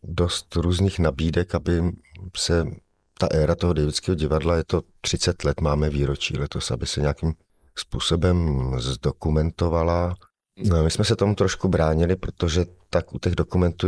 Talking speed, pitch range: 145 wpm, 75-90 Hz